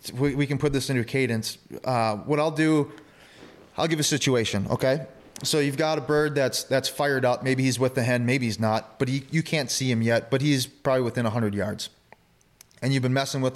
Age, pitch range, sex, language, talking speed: 20-39, 120-150 Hz, male, English, 225 wpm